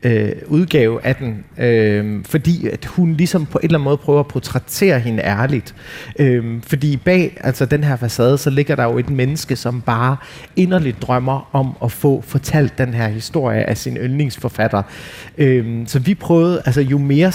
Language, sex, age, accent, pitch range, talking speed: Danish, male, 30-49, native, 120-150 Hz, 180 wpm